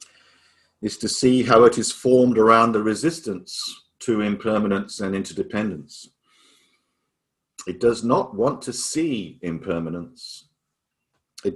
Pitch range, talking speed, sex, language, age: 100-120 Hz, 115 wpm, male, English, 50-69